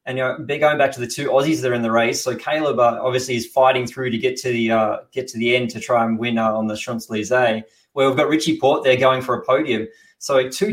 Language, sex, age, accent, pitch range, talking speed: English, male, 20-39, Australian, 120-135 Hz, 290 wpm